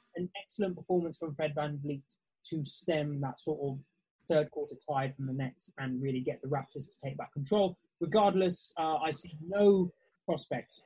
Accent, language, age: British, English, 20-39